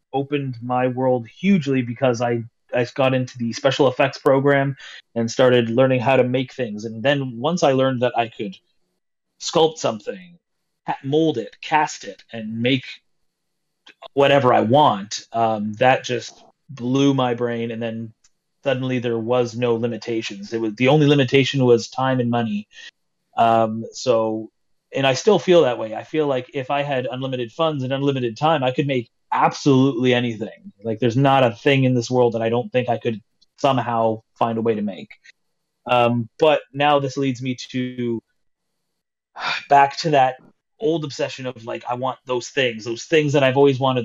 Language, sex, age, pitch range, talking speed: English, male, 30-49, 120-140 Hz, 175 wpm